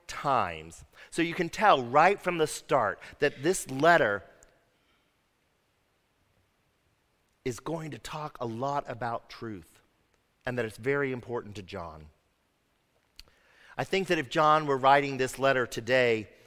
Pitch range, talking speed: 120-160 Hz, 135 wpm